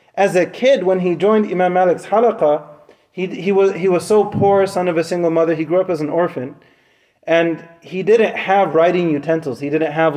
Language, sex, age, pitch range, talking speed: English, male, 30-49, 165-200 Hz, 210 wpm